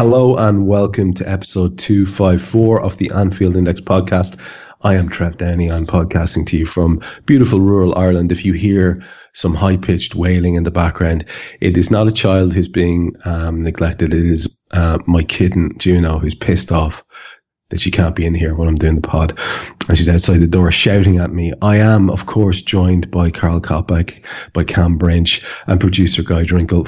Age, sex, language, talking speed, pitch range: 30-49, male, English, 190 wpm, 85-95 Hz